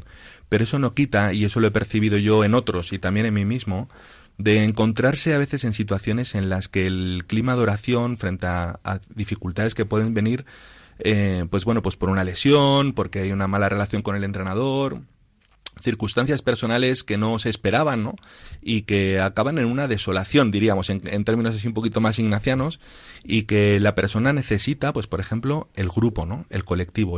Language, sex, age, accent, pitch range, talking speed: Spanish, male, 40-59, Spanish, 100-125 Hz, 190 wpm